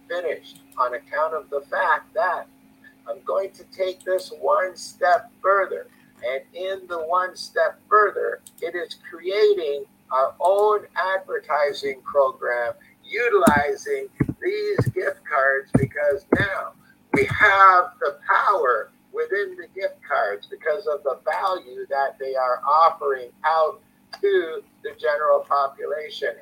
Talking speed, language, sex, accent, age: 125 wpm, English, male, American, 50-69